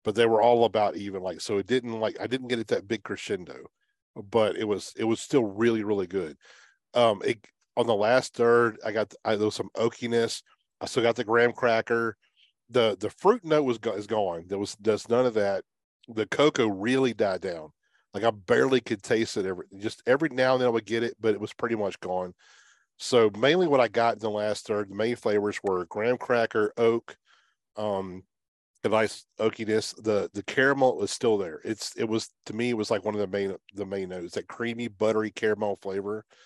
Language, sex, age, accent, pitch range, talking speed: English, male, 40-59, American, 105-120 Hz, 215 wpm